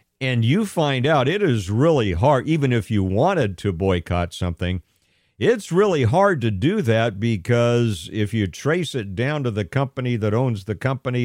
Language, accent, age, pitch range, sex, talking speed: English, American, 50-69, 90-120 Hz, male, 180 wpm